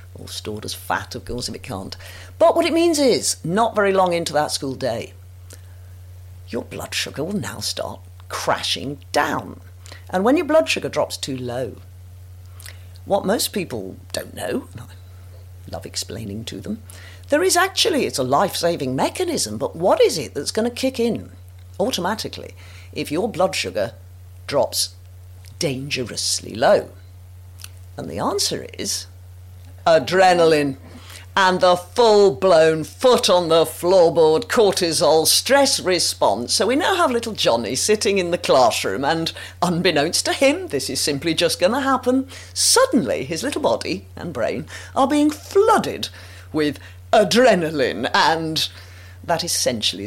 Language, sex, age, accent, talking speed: English, female, 50-69, British, 140 wpm